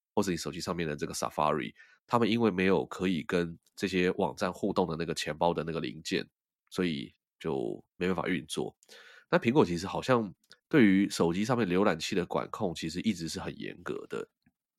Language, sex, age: Chinese, male, 20-39